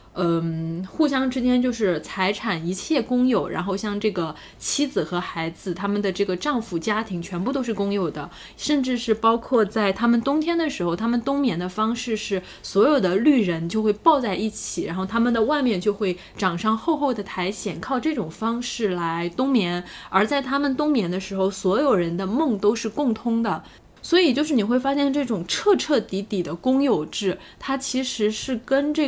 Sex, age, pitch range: female, 10-29, 185-275 Hz